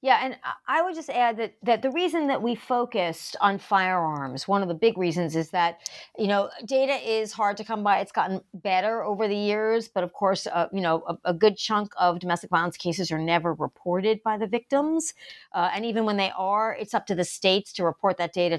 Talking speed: 230 wpm